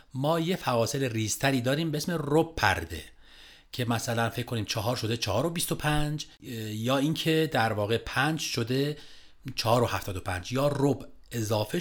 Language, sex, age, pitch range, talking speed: Persian, male, 40-59, 110-150 Hz, 145 wpm